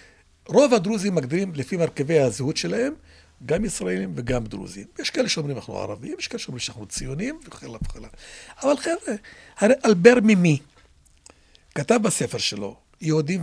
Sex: male